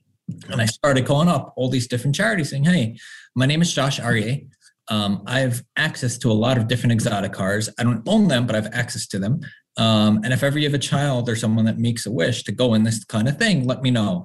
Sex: male